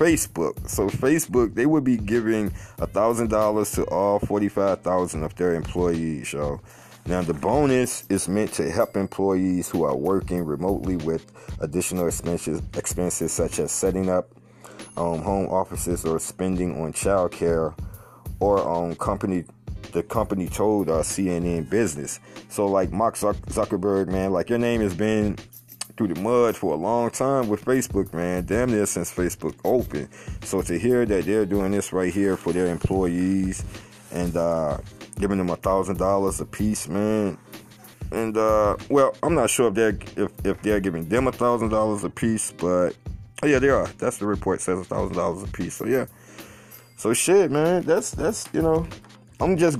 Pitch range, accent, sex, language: 90-110 Hz, American, male, English